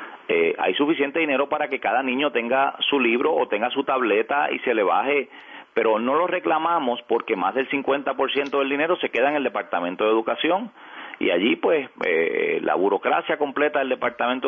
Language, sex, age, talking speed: Spanish, male, 40-59, 185 wpm